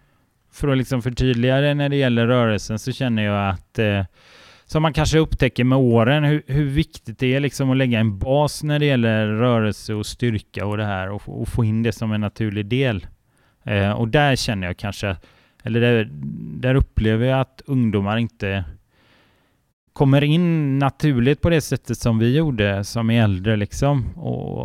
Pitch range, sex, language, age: 100-130 Hz, male, Swedish, 30-49